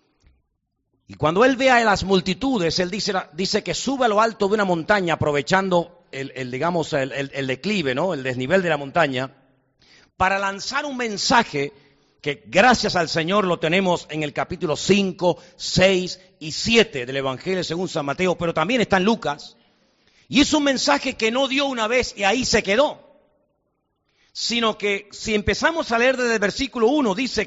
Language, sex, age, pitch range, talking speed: Spanish, male, 50-69, 165-240 Hz, 180 wpm